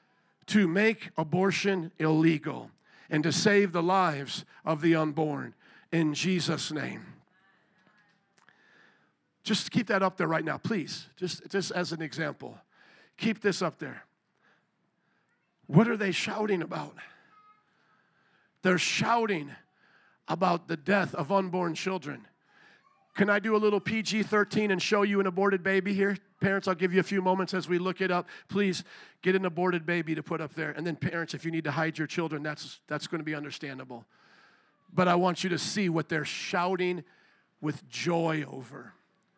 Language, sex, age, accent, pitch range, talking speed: English, male, 50-69, American, 160-200 Hz, 165 wpm